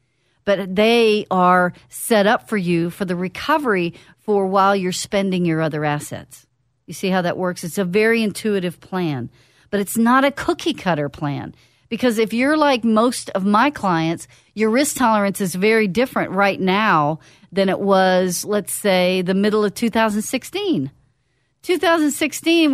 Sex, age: female, 50-69